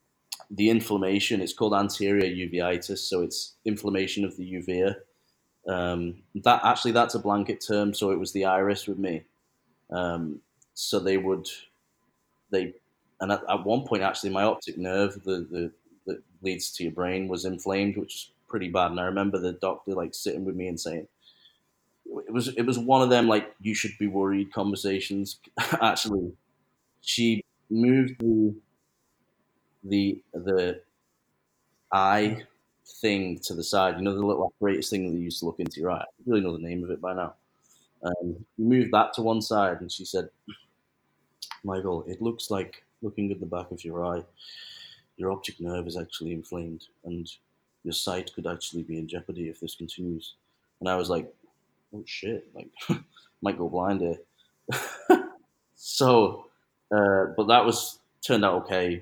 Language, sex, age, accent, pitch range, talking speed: English, male, 20-39, British, 90-105 Hz, 165 wpm